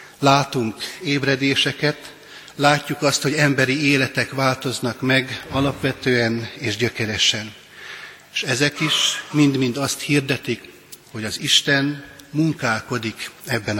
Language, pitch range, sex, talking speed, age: Hungarian, 120-140 Hz, male, 100 wpm, 60-79